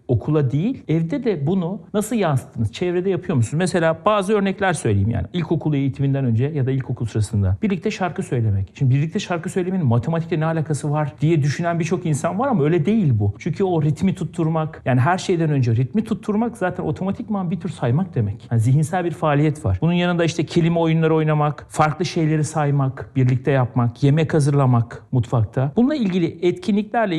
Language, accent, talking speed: Turkish, native, 175 wpm